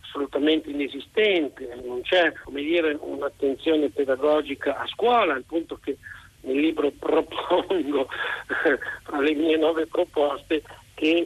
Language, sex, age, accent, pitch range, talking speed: Italian, male, 50-69, native, 145-170 Hz, 125 wpm